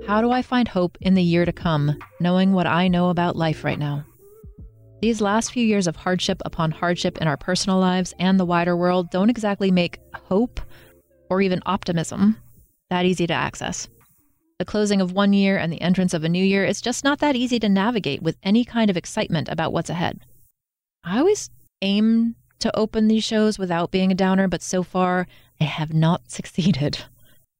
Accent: American